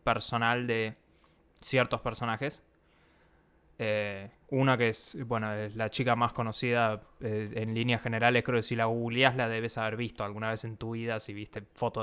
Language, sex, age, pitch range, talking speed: Spanish, male, 20-39, 115-140 Hz, 175 wpm